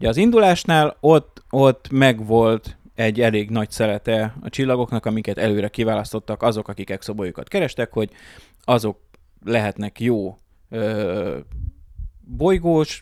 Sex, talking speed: male, 115 wpm